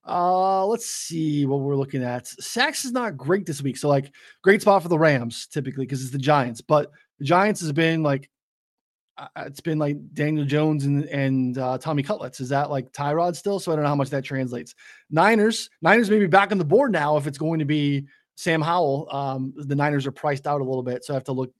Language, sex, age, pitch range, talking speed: English, male, 20-39, 135-165 Hz, 235 wpm